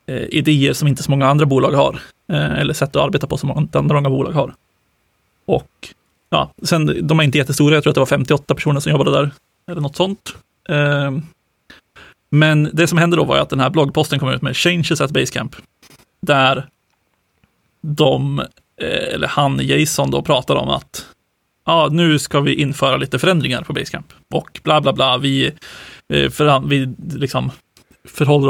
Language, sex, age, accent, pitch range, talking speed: Swedish, male, 30-49, native, 135-155 Hz, 175 wpm